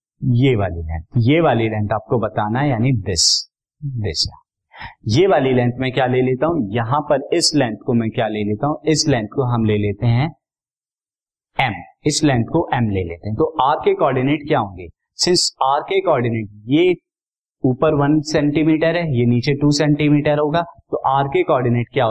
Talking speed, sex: 185 wpm, male